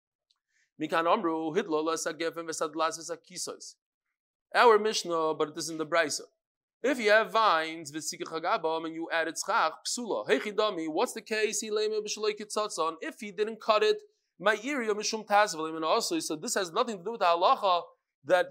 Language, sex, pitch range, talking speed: English, male, 190-255 Hz, 140 wpm